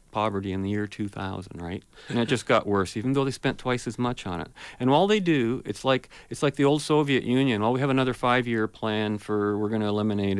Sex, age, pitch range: male, 40-59, 100-130 Hz